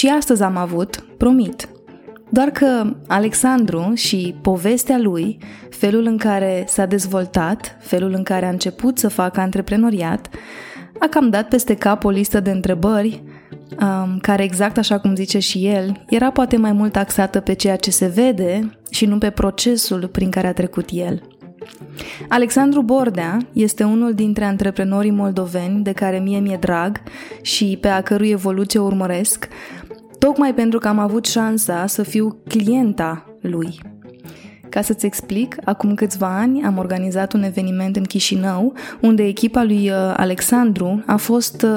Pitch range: 190-225 Hz